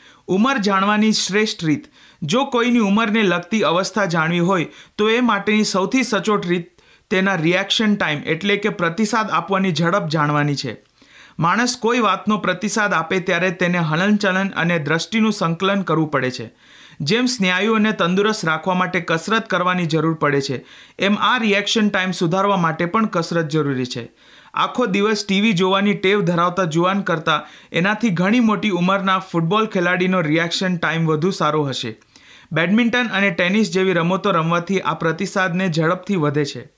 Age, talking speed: 40-59, 115 wpm